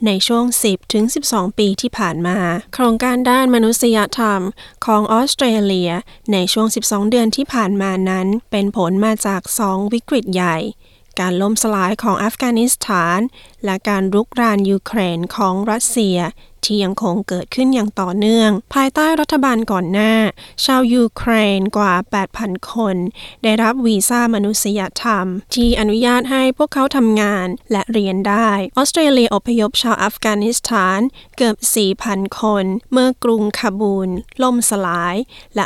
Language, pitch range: Thai, 195-235 Hz